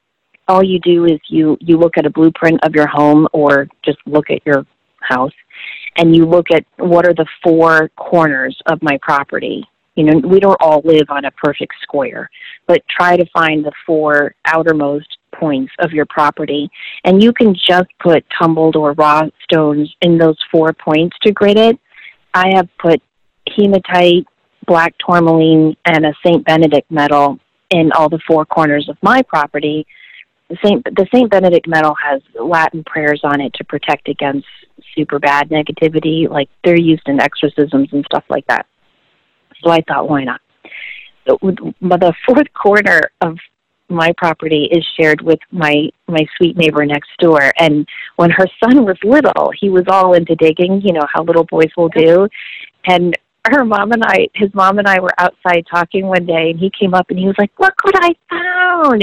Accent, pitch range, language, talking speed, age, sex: American, 155-185 Hz, English, 185 wpm, 30-49, female